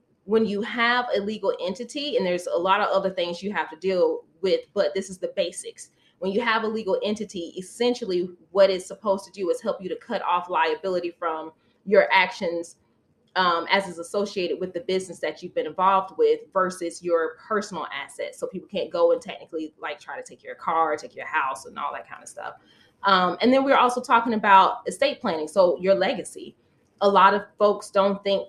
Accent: American